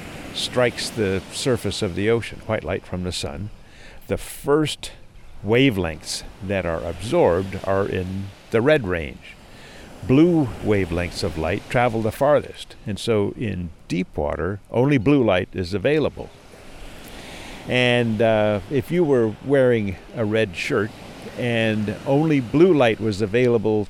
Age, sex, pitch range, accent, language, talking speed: 60-79, male, 95-120 Hz, American, English, 135 wpm